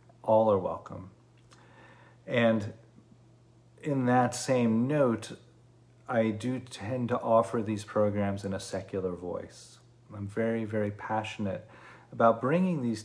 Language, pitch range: English, 105-120 Hz